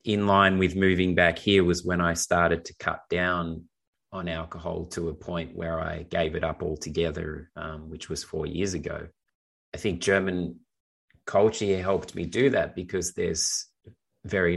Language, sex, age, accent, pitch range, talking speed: English, male, 30-49, Australian, 80-90 Hz, 170 wpm